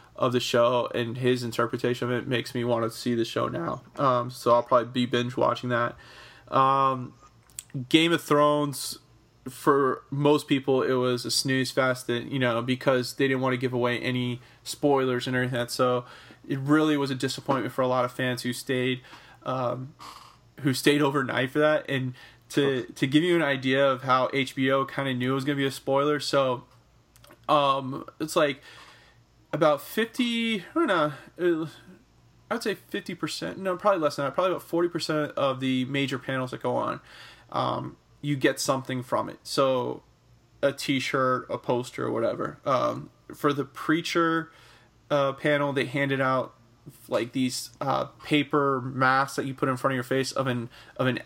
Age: 20-39